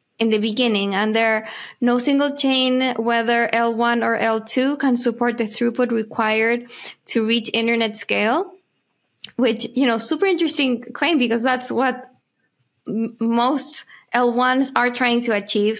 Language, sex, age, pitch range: English, female, 10-29, 220-250 Hz